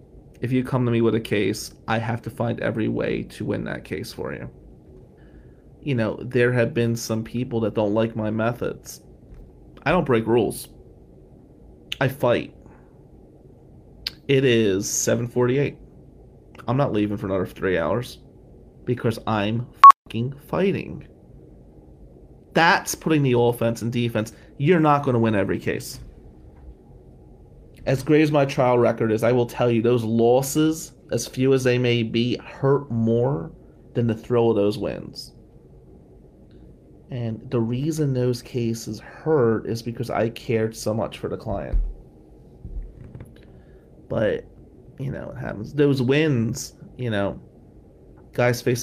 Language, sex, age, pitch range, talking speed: English, male, 30-49, 105-125 Hz, 145 wpm